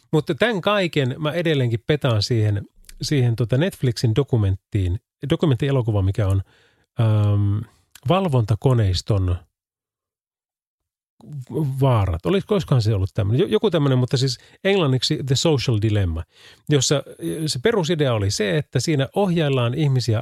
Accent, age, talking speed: native, 30-49, 115 wpm